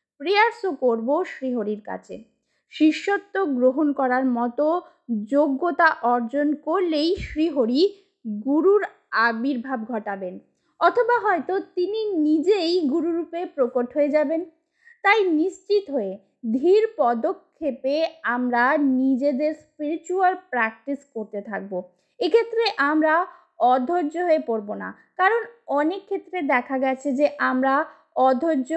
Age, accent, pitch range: 20-39, native, 255-365 Hz